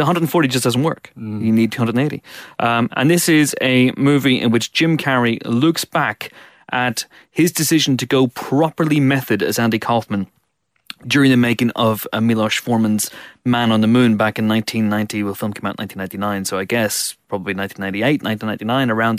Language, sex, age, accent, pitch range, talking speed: English, male, 30-49, British, 110-135 Hz, 170 wpm